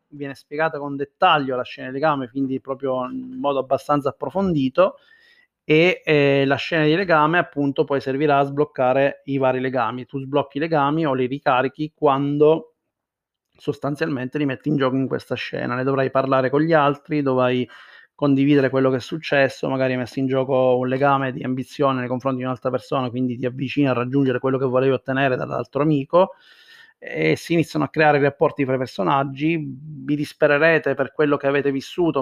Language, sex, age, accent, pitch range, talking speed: Italian, male, 30-49, native, 135-150 Hz, 180 wpm